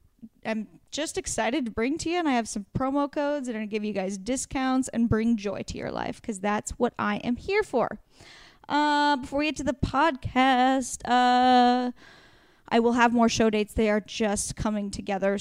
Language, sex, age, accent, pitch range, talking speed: English, female, 10-29, American, 220-280 Hz, 205 wpm